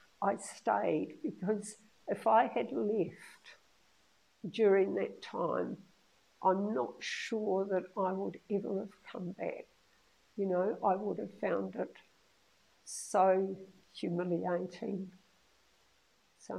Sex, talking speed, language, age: female, 110 wpm, English, 60-79